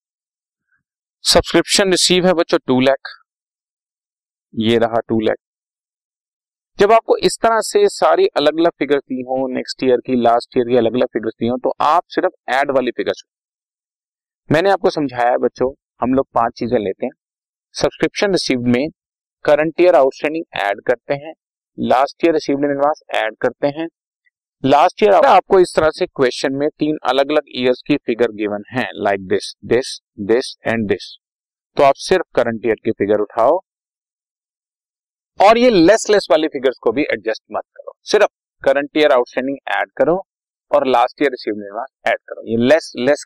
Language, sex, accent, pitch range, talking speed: Hindi, male, native, 120-175 Hz, 160 wpm